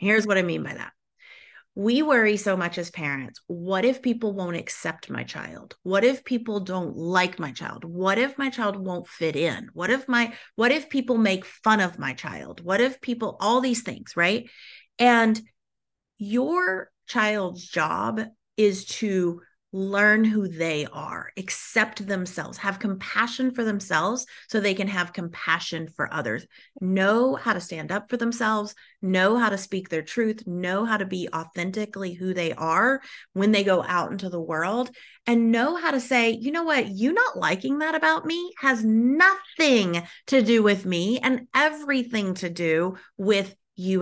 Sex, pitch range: female, 180-235 Hz